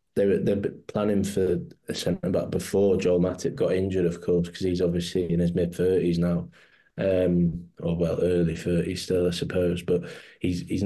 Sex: male